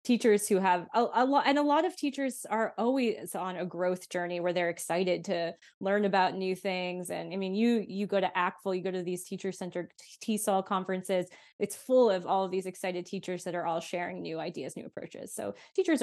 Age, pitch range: 20-39, 180-210 Hz